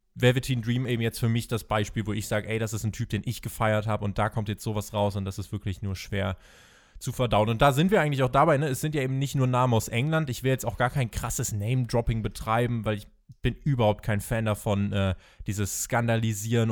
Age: 20-39